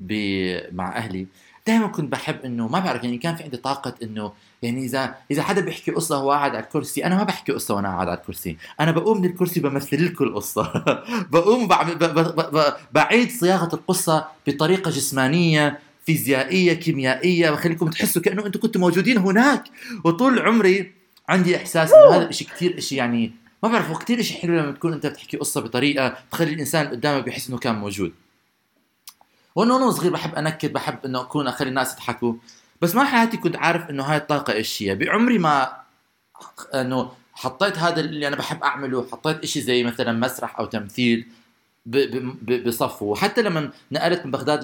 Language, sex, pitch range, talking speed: Arabic, male, 125-175 Hz, 170 wpm